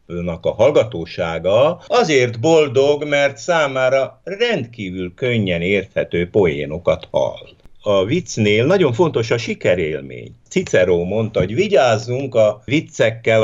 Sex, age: male, 60-79